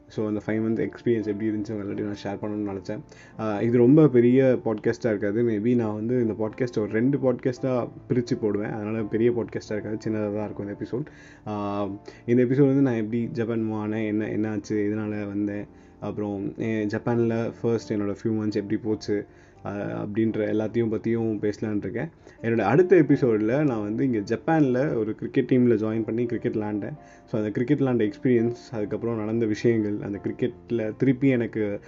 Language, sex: Tamil, male